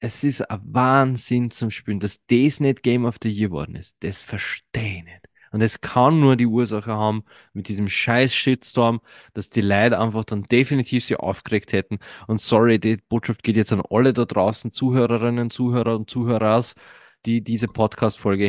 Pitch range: 110-140 Hz